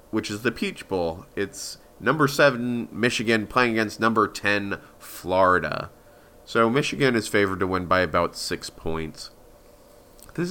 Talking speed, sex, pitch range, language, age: 145 wpm, male, 95-125 Hz, English, 30-49